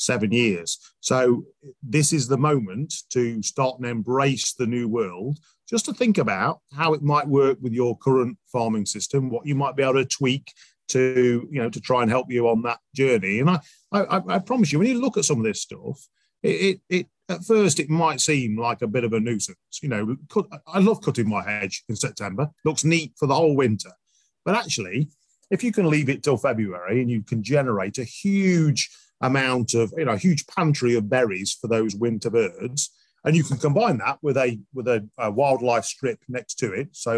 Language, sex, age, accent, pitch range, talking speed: English, male, 40-59, British, 115-150 Hz, 215 wpm